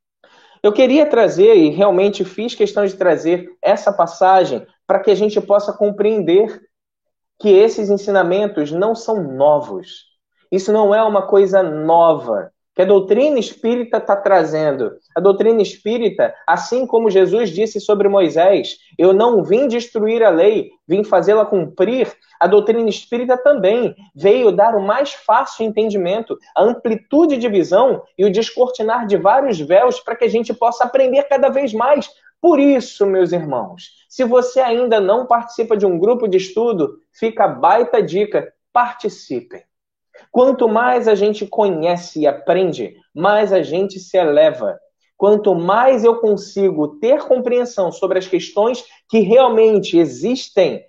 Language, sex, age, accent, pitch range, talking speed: Portuguese, male, 20-39, Brazilian, 190-245 Hz, 145 wpm